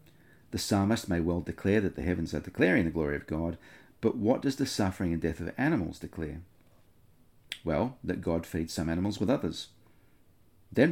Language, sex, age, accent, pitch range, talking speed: English, male, 40-59, Australian, 85-100 Hz, 180 wpm